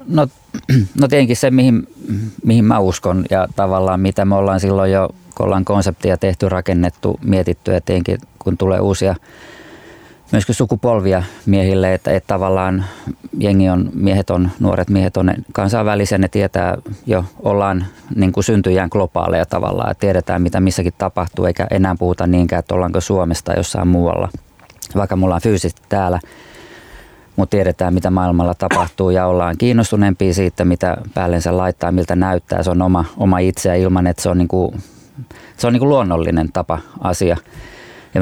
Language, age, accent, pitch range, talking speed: Finnish, 20-39, native, 90-100 Hz, 155 wpm